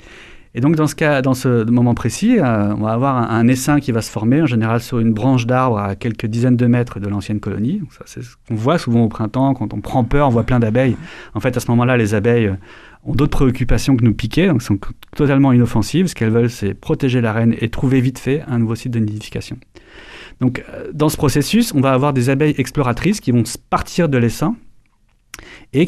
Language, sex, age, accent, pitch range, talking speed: French, male, 30-49, French, 115-145 Hz, 235 wpm